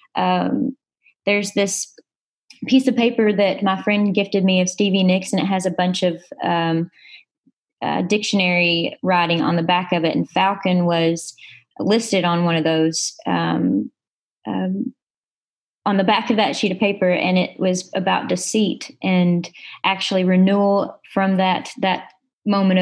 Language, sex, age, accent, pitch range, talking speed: English, female, 20-39, American, 180-210 Hz, 155 wpm